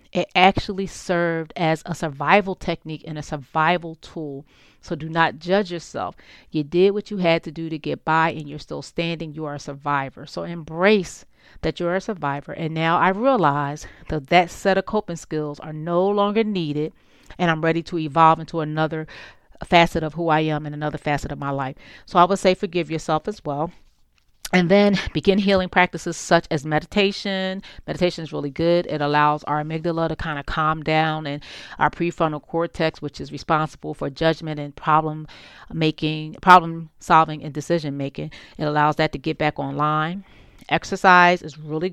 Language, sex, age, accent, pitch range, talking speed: English, female, 40-59, American, 150-175 Hz, 180 wpm